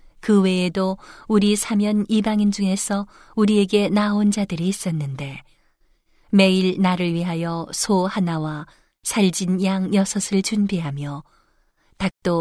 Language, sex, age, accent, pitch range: Korean, female, 40-59, native, 175-205 Hz